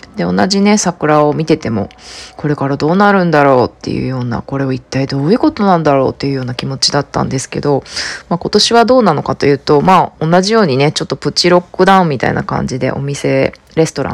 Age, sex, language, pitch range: 20-39, female, Japanese, 135-185 Hz